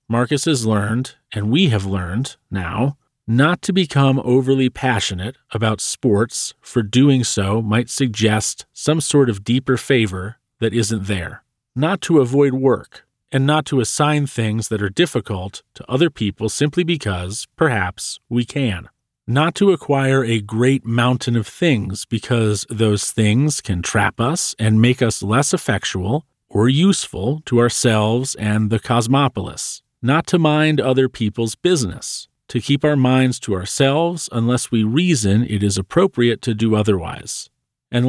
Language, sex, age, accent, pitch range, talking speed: English, male, 40-59, American, 110-140 Hz, 150 wpm